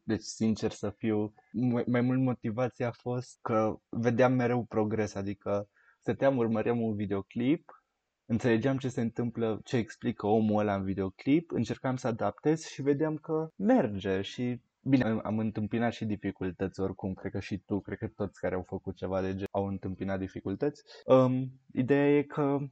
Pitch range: 105-135 Hz